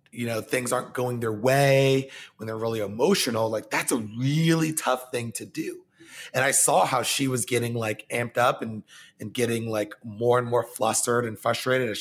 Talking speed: 200 wpm